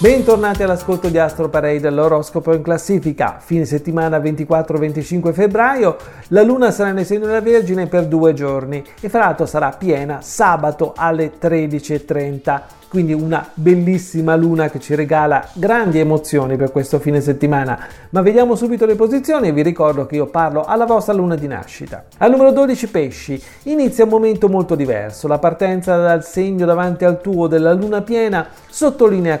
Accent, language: native, Italian